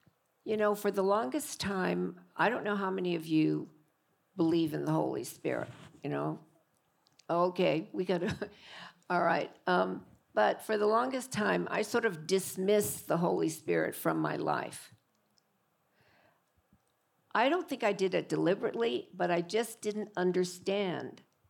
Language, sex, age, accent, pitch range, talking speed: English, female, 50-69, American, 175-210 Hz, 150 wpm